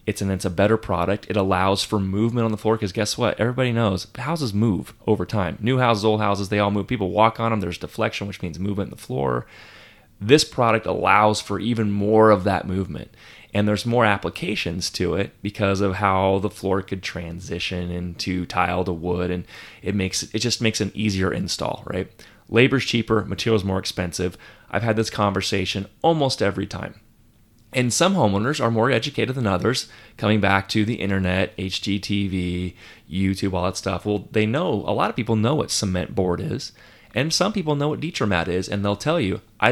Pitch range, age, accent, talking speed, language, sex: 95-115 Hz, 30-49, American, 195 wpm, English, male